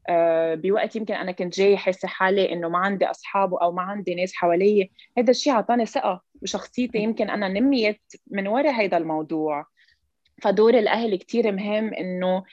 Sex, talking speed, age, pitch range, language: female, 160 wpm, 20-39, 180-220 Hz, English